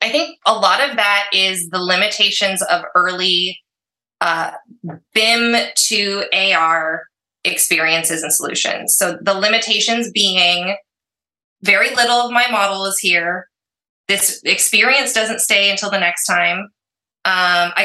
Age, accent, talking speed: 20-39, American, 130 wpm